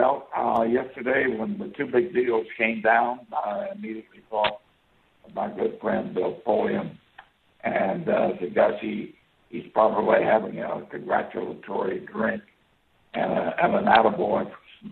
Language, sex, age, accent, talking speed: English, male, 60-79, American, 145 wpm